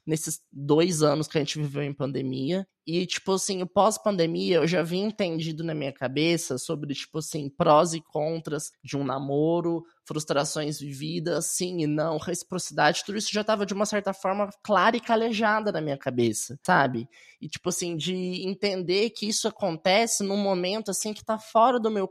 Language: Portuguese